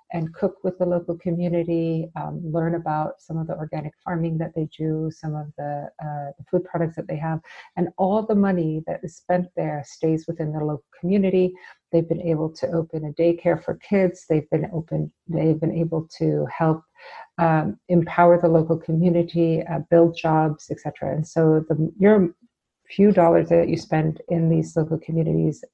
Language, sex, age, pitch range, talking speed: English, female, 50-69, 160-175 Hz, 185 wpm